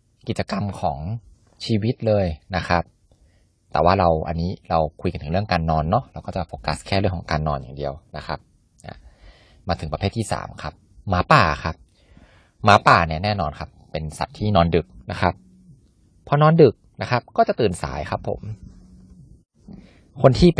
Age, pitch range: 20-39, 85-115 Hz